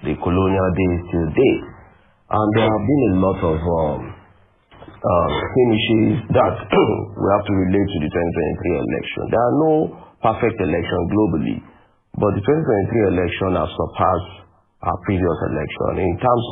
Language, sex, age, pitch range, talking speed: English, male, 50-69, 95-115 Hz, 155 wpm